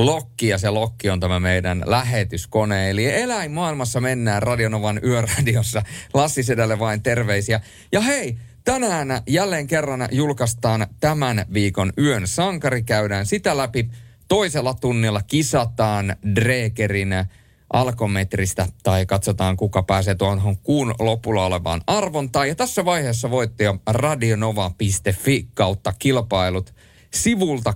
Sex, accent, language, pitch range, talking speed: male, native, Finnish, 100-125 Hz, 115 wpm